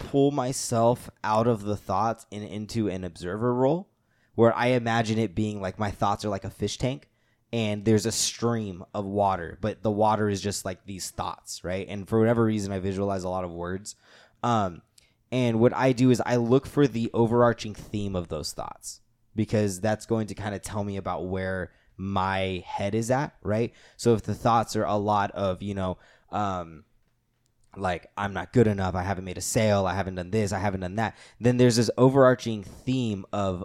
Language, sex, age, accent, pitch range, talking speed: English, male, 20-39, American, 100-120 Hz, 205 wpm